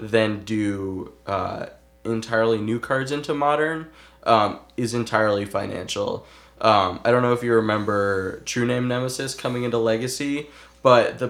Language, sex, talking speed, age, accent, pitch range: English, male, 145 wpm, 20-39, American, 110-135 Hz